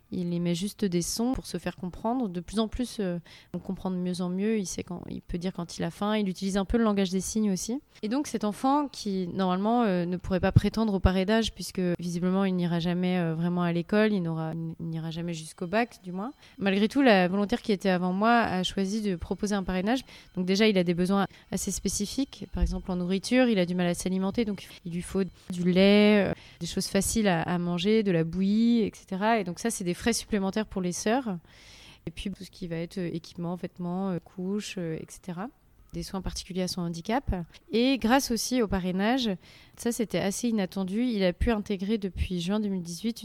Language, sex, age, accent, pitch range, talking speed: French, female, 20-39, French, 180-215 Hz, 225 wpm